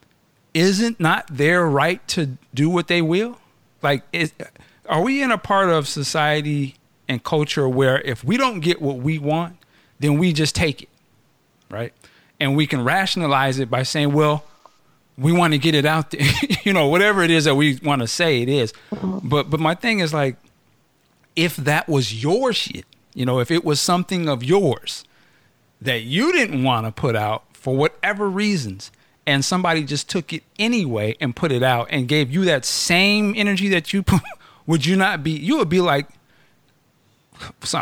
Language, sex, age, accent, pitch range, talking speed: English, male, 50-69, American, 135-190 Hz, 185 wpm